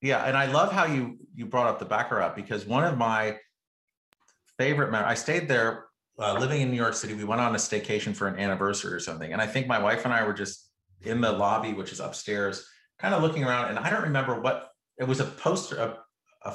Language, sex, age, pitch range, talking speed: English, male, 30-49, 110-140 Hz, 240 wpm